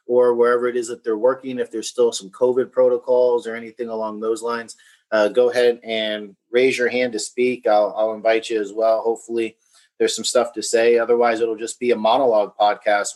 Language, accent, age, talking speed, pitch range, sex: English, American, 30-49, 210 wpm, 110-140 Hz, male